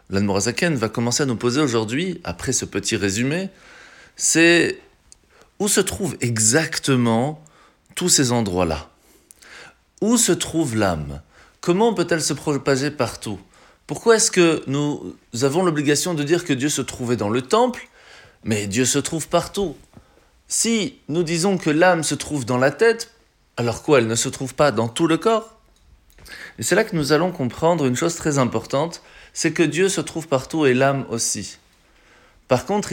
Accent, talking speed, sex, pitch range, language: French, 165 wpm, male, 120-170 Hz, French